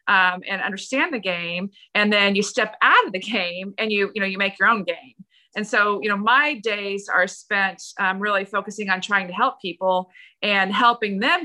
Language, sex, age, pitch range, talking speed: English, female, 30-49, 190-230 Hz, 215 wpm